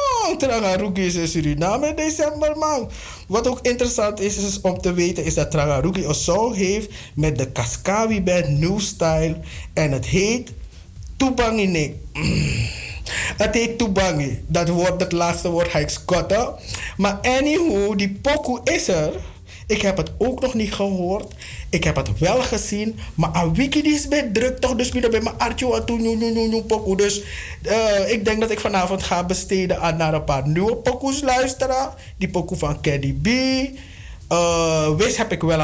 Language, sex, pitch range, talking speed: Dutch, male, 155-225 Hz, 170 wpm